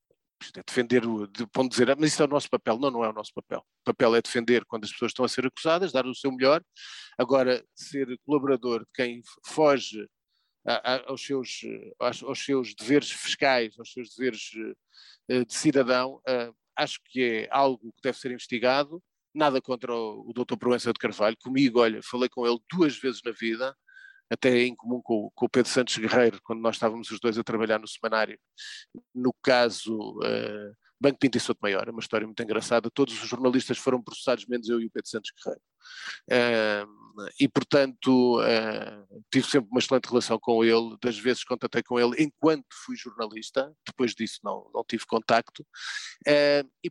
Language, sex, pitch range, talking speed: Portuguese, male, 115-135 Hz, 195 wpm